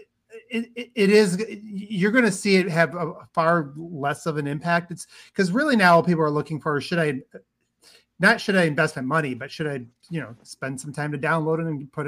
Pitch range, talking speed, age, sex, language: 140-180 Hz, 220 wpm, 30-49, male, English